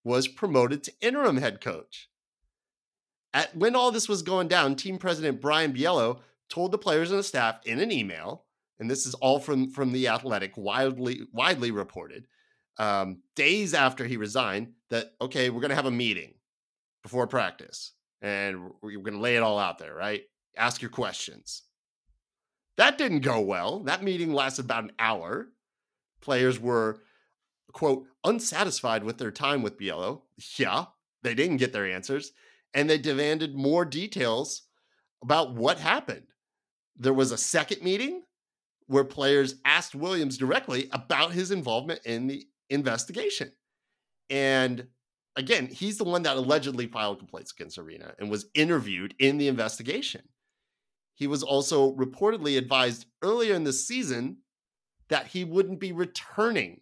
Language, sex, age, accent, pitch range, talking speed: English, male, 30-49, American, 125-170 Hz, 155 wpm